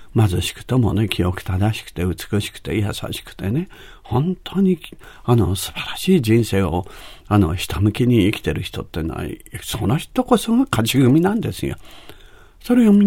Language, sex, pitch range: Japanese, male, 90-115 Hz